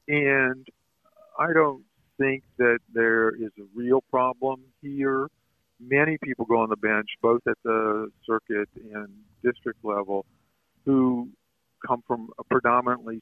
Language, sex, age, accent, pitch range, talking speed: English, male, 50-69, American, 105-130 Hz, 130 wpm